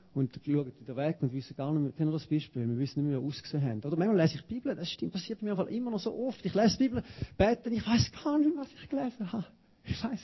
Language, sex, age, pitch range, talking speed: German, male, 40-59, 140-195 Hz, 300 wpm